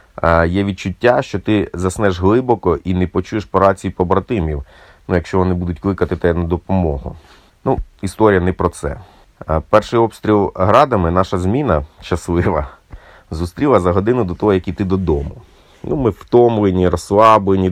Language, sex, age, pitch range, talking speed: Ukrainian, male, 30-49, 90-120 Hz, 140 wpm